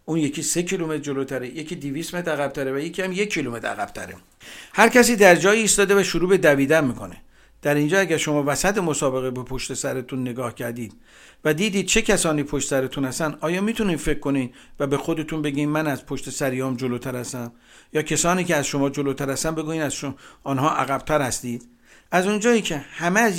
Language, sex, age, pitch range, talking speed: Persian, male, 60-79, 135-175 Hz, 190 wpm